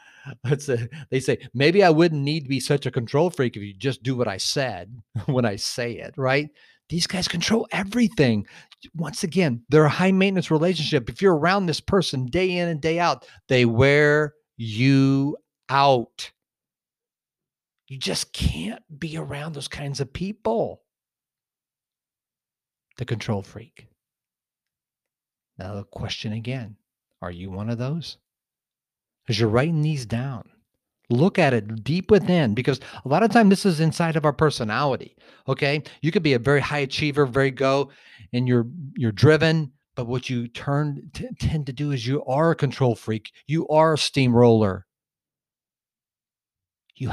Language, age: English, 50-69